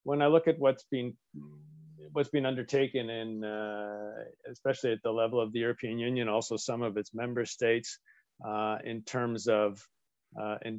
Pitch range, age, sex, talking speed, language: 110-135 Hz, 40-59, male, 170 wpm, English